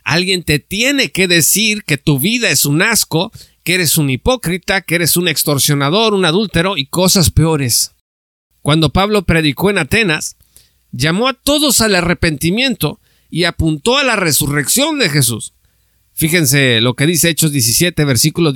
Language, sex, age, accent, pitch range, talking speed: Spanish, male, 50-69, Mexican, 145-200 Hz, 155 wpm